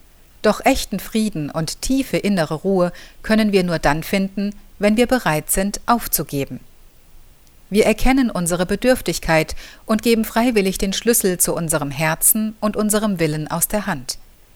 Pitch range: 155-215 Hz